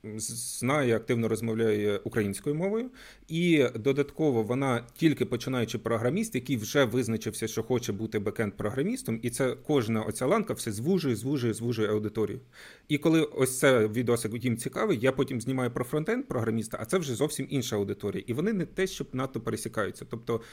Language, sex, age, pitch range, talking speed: Ukrainian, male, 30-49, 110-140 Hz, 160 wpm